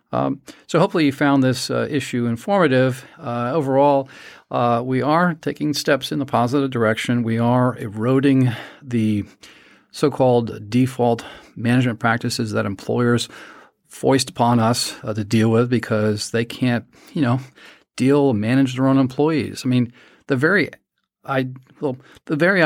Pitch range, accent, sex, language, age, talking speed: 120-150 Hz, American, male, English, 50-69, 145 wpm